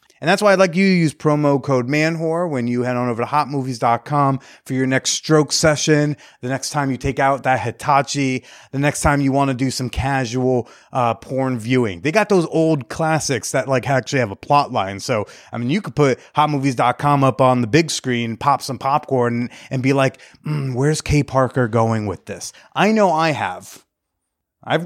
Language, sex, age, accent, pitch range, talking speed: English, male, 30-49, American, 125-155 Hz, 205 wpm